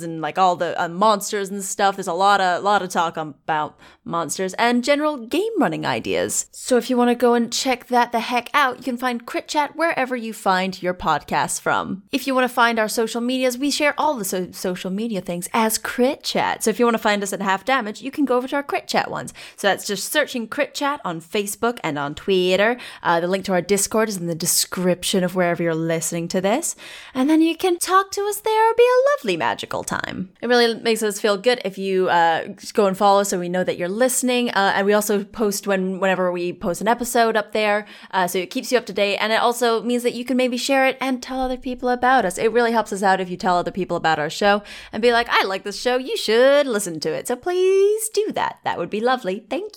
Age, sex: 20-39, female